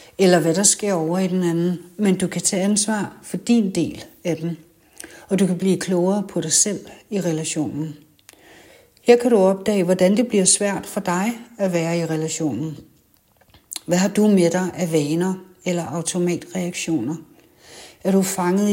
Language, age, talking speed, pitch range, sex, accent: Danish, 60-79, 175 wpm, 170-205 Hz, female, native